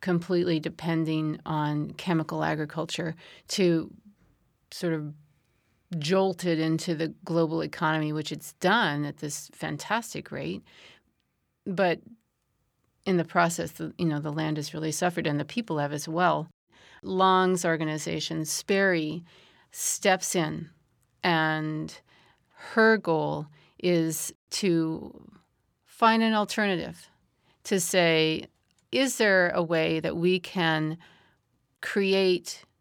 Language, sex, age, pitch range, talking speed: English, female, 40-59, 155-185 Hz, 110 wpm